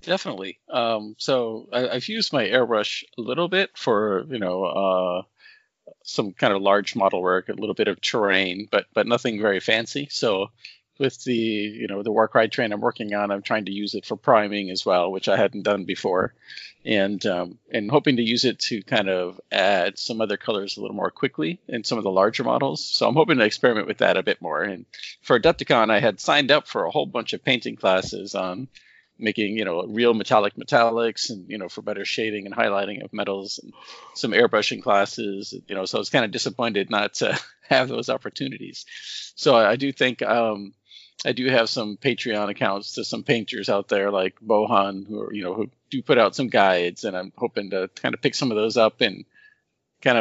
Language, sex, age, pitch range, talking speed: English, male, 40-59, 100-120 Hz, 215 wpm